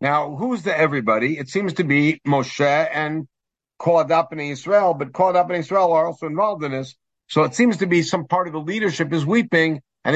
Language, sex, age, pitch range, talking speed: English, male, 60-79, 140-185 Hz, 205 wpm